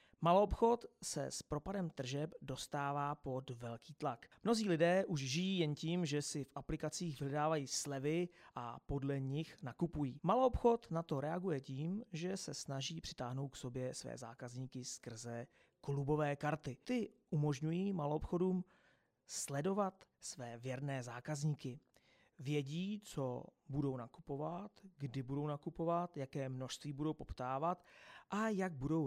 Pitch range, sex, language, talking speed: 135-170 Hz, male, Czech, 130 wpm